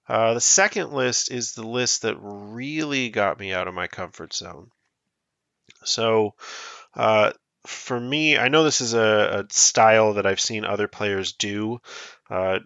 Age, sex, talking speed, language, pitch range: 30-49, male, 160 wpm, English, 100-120 Hz